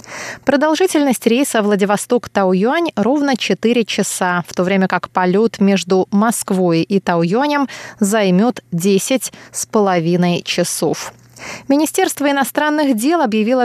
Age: 20-39